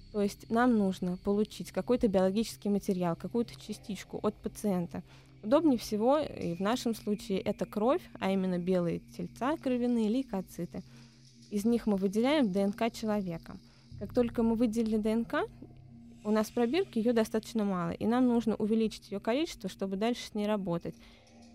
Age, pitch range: 20-39, 185-225 Hz